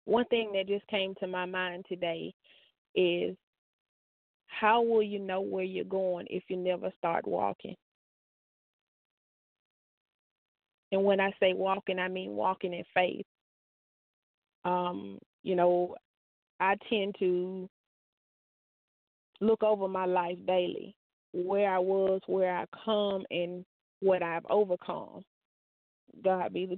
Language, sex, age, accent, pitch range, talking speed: English, female, 20-39, American, 185-215 Hz, 125 wpm